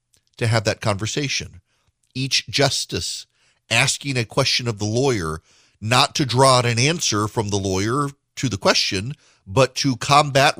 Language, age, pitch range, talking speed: English, 40-59, 110-140 Hz, 155 wpm